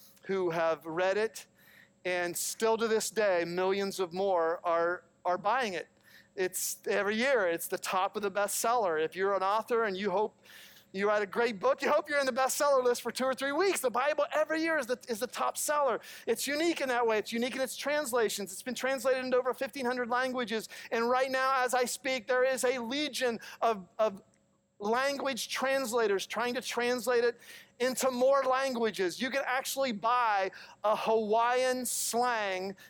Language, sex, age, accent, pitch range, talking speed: English, male, 40-59, American, 220-275 Hz, 190 wpm